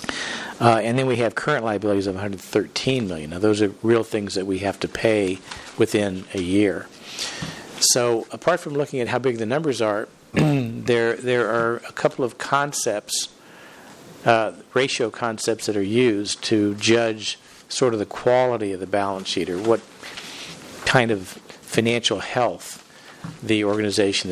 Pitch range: 105-125 Hz